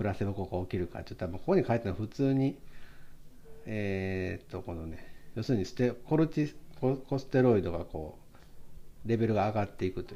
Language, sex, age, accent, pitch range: Japanese, male, 50-69, native, 95-125 Hz